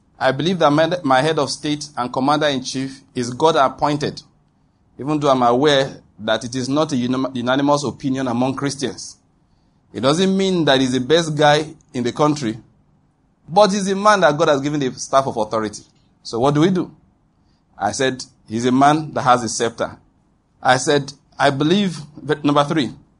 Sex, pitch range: male, 130-155 Hz